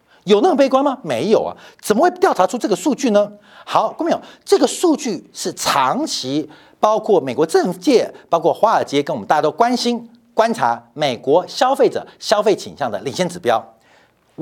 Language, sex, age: Chinese, male, 50-69